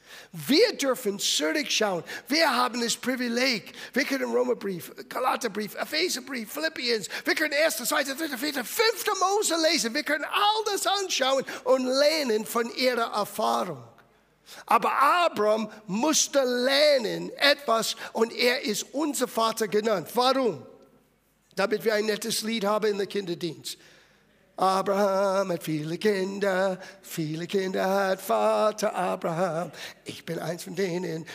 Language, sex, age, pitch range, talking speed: German, male, 50-69, 195-275 Hz, 130 wpm